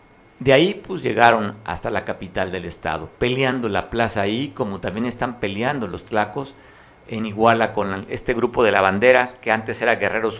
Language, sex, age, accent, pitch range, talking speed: Spanish, male, 50-69, Mexican, 100-125 Hz, 180 wpm